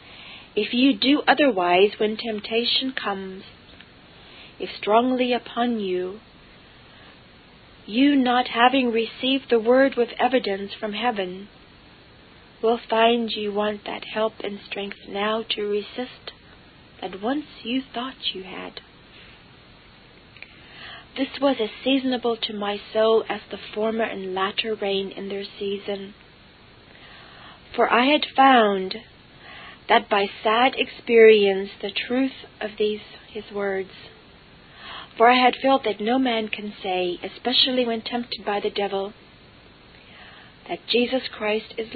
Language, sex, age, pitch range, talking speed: English, female, 40-59, 205-245 Hz, 125 wpm